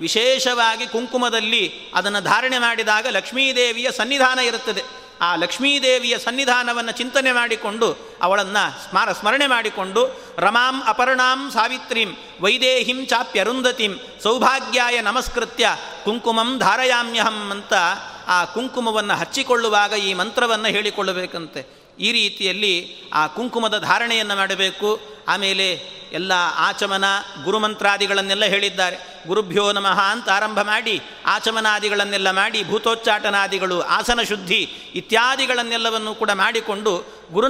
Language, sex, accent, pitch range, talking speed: Kannada, male, native, 195-235 Hz, 95 wpm